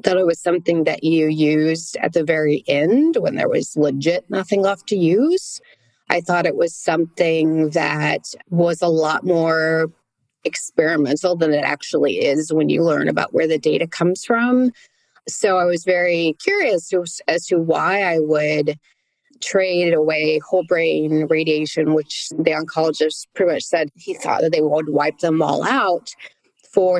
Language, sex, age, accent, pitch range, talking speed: English, female, 30-49, American, 155-180 Hz, 165 wpm